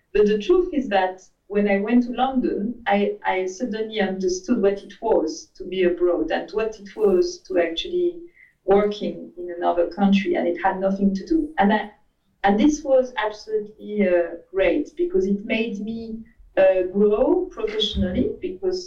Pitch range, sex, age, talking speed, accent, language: 195-255 Hz, female, 40-59, 165 wpm, French, English